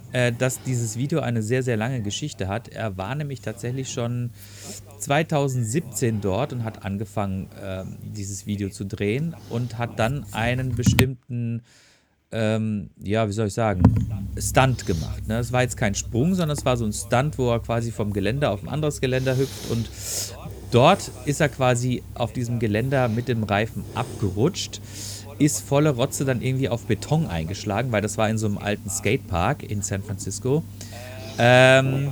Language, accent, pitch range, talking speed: German, German, 105-130 Hz, 170 wpm